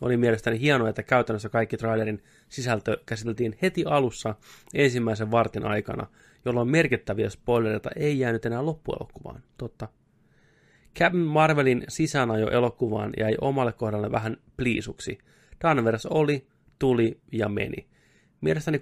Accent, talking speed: native, 120 wpm